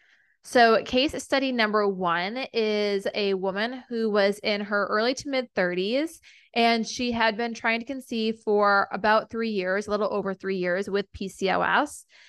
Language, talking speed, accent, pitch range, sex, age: English, 165 wpm, American, 190-230 Hz, female, 20-39